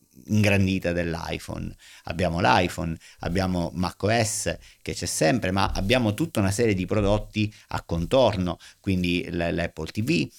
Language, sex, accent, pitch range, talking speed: Italian, male, native, 90-110 Hz, 120 wpm